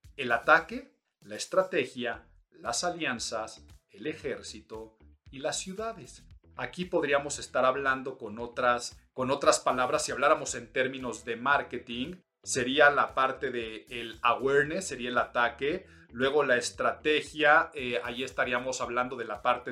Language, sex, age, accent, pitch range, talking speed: Spanish, male, 40-59, Mexican, 120-155 Hz, 130 wpm